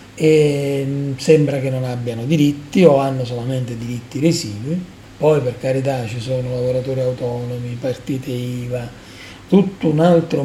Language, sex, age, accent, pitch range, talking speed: Italian, male, 40-59, native, 125-155 Hz, 130 wpm